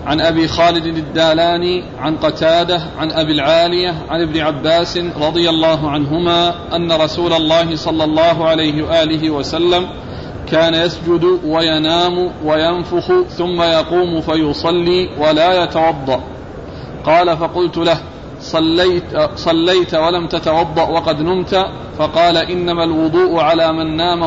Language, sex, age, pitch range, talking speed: Arabic, male, 40-59, 160-175 Hz, 115 wpm